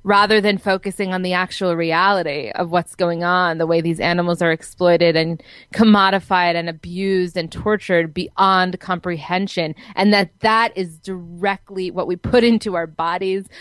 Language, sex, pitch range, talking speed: English, female, 175-220 Hz, 160 wpm